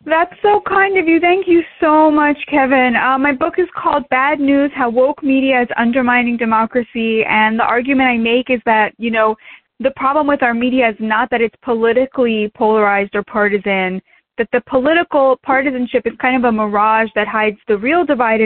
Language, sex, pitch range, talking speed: English, female, 220-280 Hz, 195 wpm